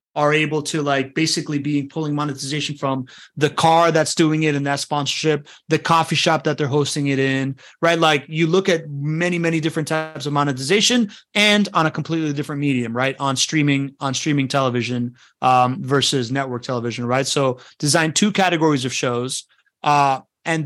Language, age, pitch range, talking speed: English, 30-49, 135-160 Hz, 175 wpm